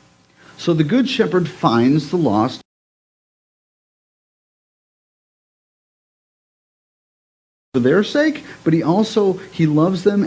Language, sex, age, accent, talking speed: English, male, 50-69, American, 95 wpm